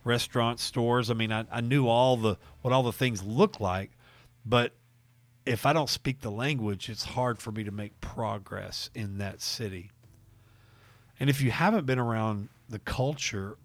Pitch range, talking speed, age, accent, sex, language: 105-120 Hz, 170 wpm, 40-59, American, male, English